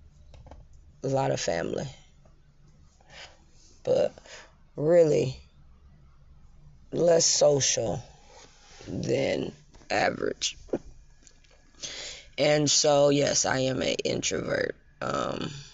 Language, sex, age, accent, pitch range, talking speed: English, female, 20-39, American, 115-155 Hz, 70 wpm